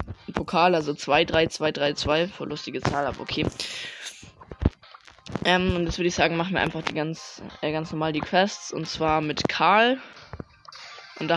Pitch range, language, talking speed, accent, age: 150-170 Hz, German, 180 wpm, German, 20-39